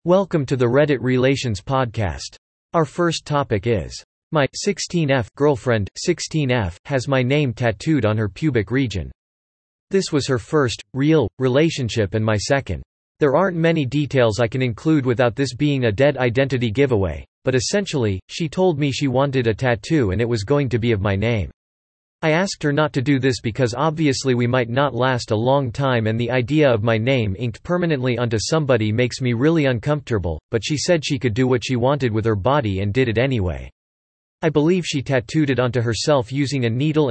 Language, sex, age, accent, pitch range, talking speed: English, male, 40-59, American, 115-145 Hz, 190 wpm